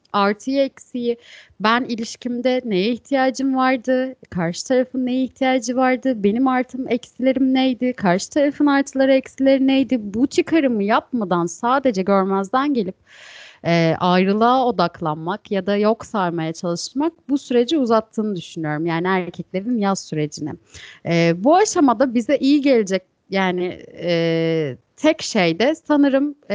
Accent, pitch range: native, 185-270 Hz